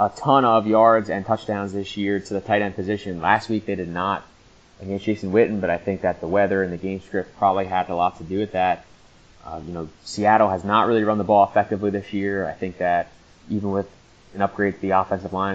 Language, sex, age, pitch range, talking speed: English, male, 20-39, 90-105 Hz, 245 wpm